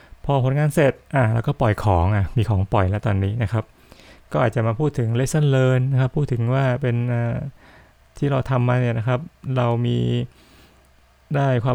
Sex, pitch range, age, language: male, 115-135 Hz, 20-39, Thai